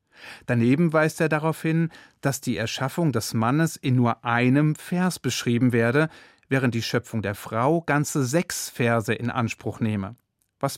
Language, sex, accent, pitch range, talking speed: German, male, German, 115-150 Hz, 155 wpm